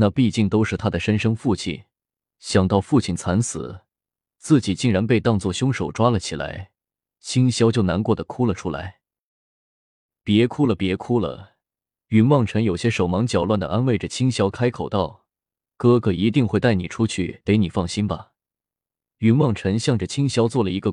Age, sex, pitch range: 20-39, male, 95-120 Hz